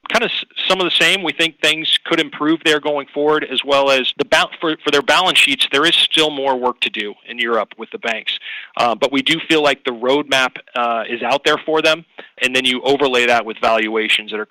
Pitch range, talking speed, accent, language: 120-150 Hz, 245 wpm, American, English